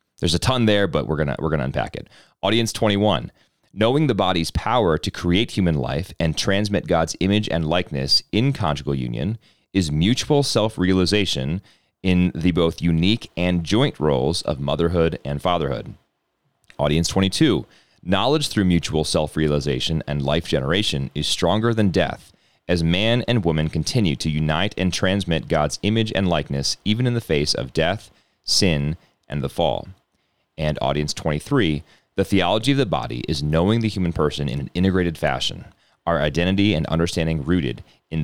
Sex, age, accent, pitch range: male, 30-49, American, 75-100 Hz